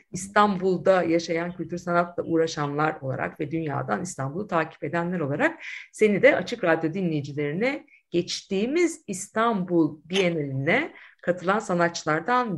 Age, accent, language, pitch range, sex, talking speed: 50-69, native, Turkish, 155-210 Hz, female, 105 wpm